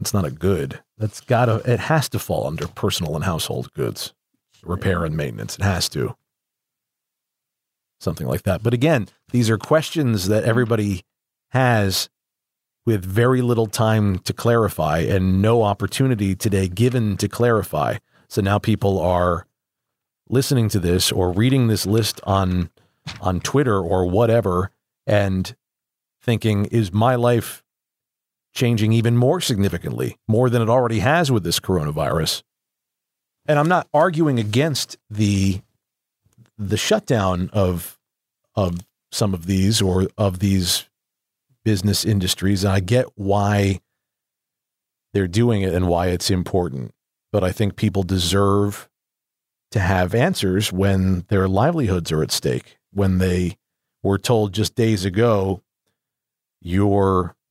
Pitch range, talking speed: 95-120 Hz, 135 wpm